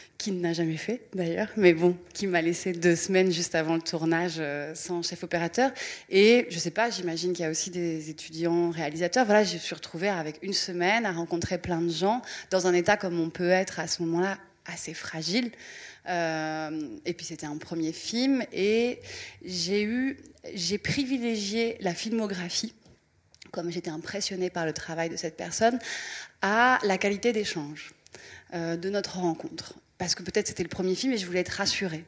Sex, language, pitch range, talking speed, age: female, French, 165-200 Hz, 190 wpm, 30-49